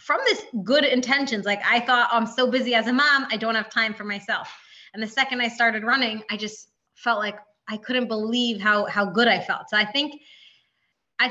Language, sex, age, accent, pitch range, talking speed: English, female, 20-39, American, 210-250 Hz, 225 wpm